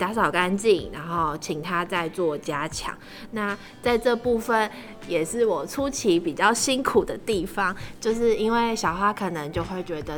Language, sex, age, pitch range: Chinese, female, 20-39, 170-215 Hz